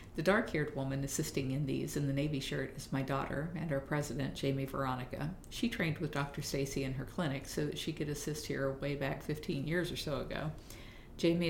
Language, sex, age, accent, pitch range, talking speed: English, female, 50-69, American, 140-160 Hz, 210 wpm